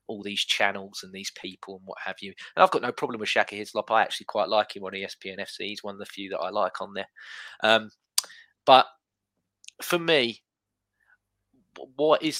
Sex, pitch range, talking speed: male, 105-135 Hz, 205 wpm